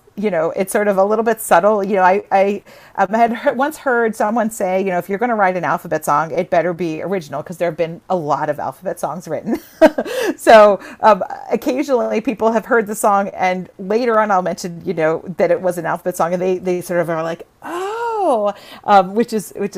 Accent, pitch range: American, 170-215 Hz